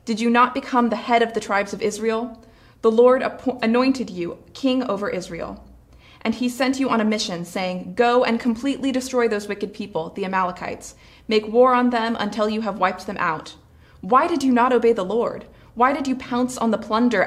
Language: English